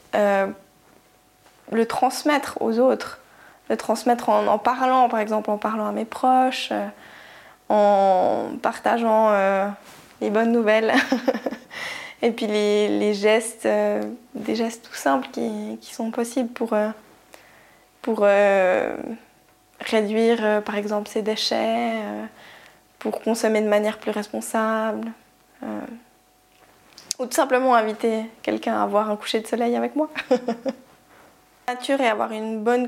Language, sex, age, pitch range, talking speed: French, female, 10-29, 210-245 Hz, 135 wpm